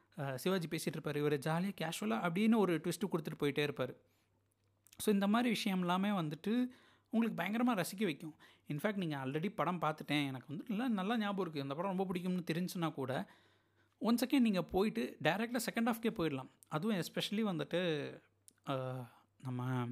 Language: Tamil